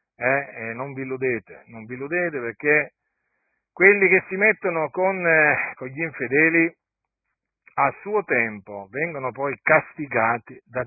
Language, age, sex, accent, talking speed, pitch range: Italian, 50-69, male, native, 140 wpm, 115-170 Hz